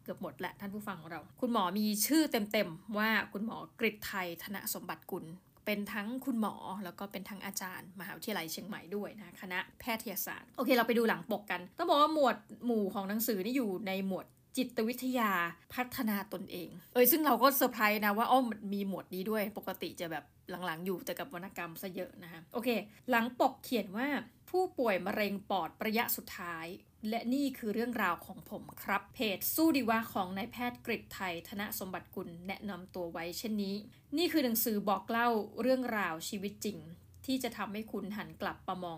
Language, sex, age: Thai, female, 20-39